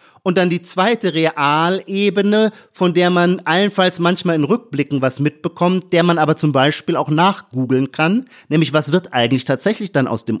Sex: male